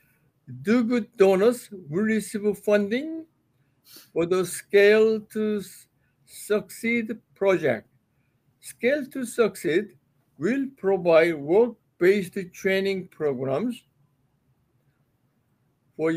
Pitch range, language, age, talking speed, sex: 150-225 Hz, English, 60-79, 80 wpm, male